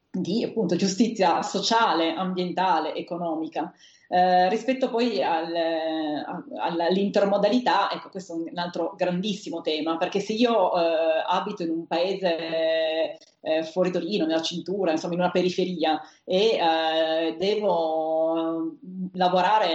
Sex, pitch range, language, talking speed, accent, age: female, 165-215 Hz, Italian, 120 wpm, native, 30-49